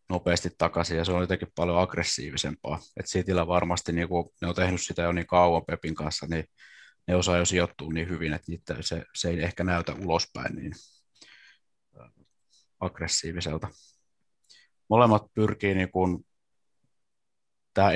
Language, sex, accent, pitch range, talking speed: Finnish, male, native, 85-100 Hz, 145 wpm